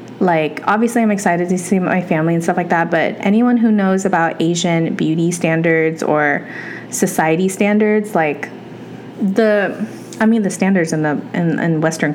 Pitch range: 165-210 Hz